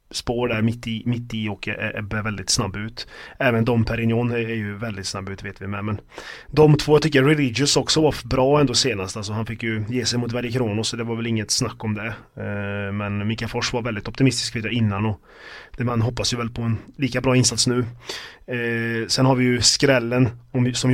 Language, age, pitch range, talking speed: Swedish, 30-49, 110-125 Hz, 225 wpm